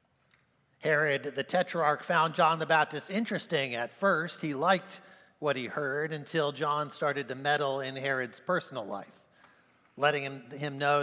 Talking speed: 150 wpm